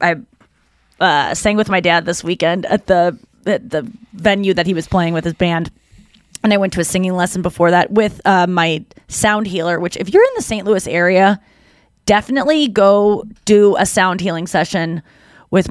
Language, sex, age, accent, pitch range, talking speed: English, female, 20-39, American, 175-215 Hz, 190 wpm